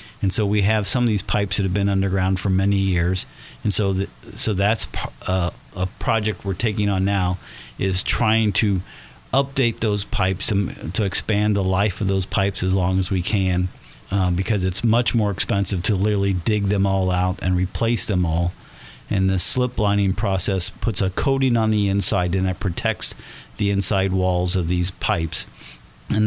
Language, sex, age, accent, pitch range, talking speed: English, male, 50-69, American, 95-110 Hz, 190 wpm